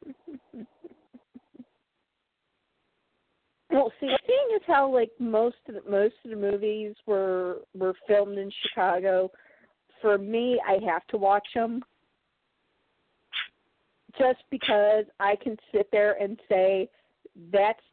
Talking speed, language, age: 115 wpm, English, 40-59